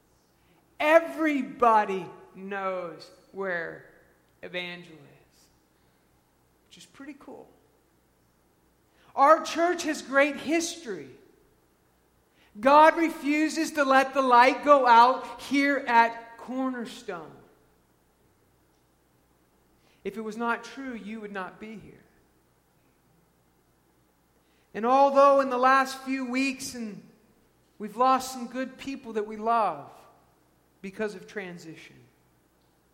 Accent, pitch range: American, 190-275 Hz